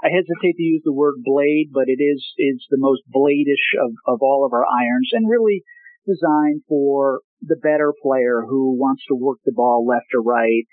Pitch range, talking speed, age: 130-185 Hz, 200 wpm, 50-69